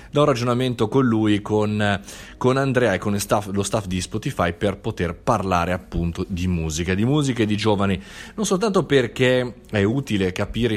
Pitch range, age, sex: 90-115 Hz, 30-49, male